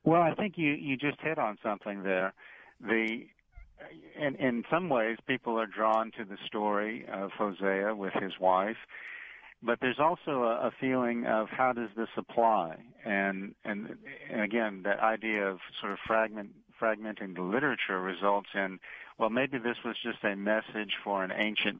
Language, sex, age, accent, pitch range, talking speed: English, male, 50-69, American, 95-110 Hz, 170 wpm